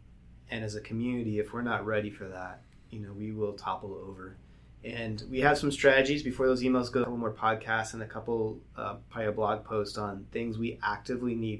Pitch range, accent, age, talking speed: 100-120 Hz, American, 20-39, 215 wpm